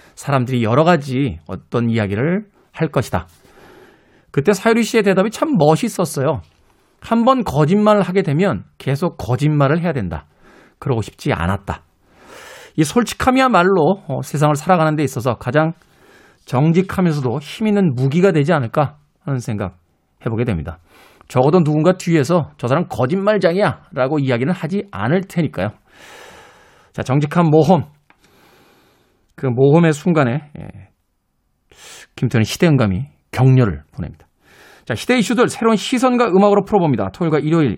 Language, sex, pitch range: Korean, male, 125-185 Hz